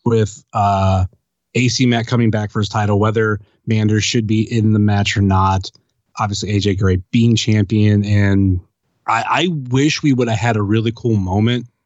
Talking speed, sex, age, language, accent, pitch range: 175 wpm, male, 20-39, English, American, 105-125 Hz